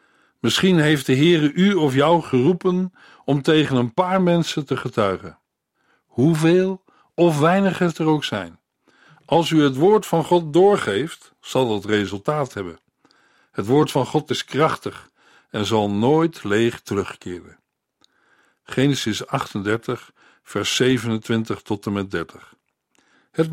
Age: 50-69